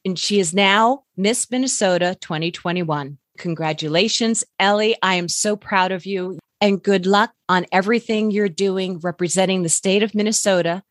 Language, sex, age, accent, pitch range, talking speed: English, female, 30-49, American, 185-260 Hz, 150 wpm